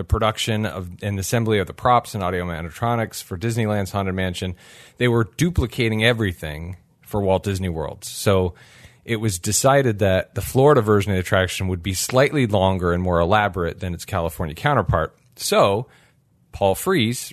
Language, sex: English, male